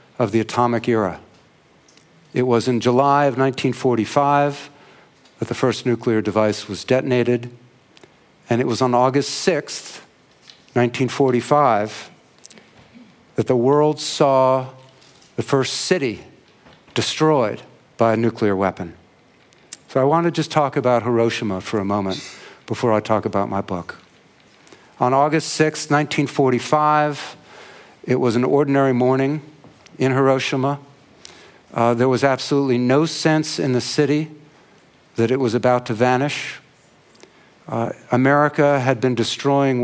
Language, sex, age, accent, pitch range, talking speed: English, male, 50-69, American, 120-145 Hz, 125 wpm